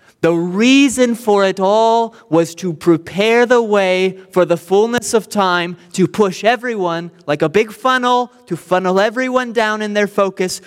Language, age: English, 20-39